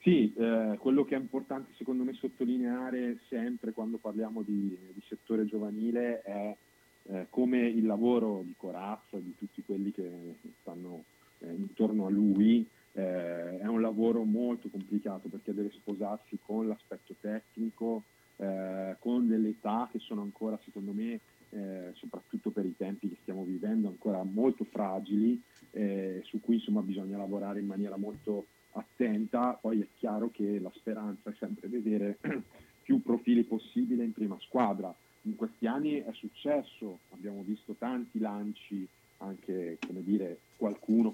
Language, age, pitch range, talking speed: Italian, 30-49, 100-120 Hz, 150 wpm